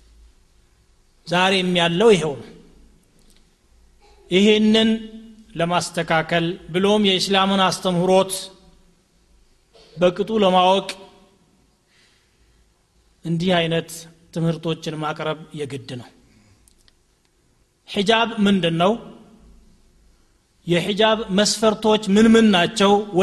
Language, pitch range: Amharic, 175-210 Hz